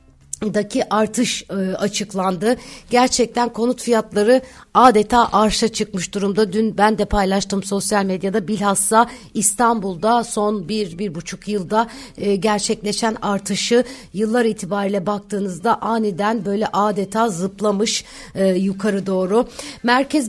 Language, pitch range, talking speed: Turkish, 190-225 Hz, 110 wpm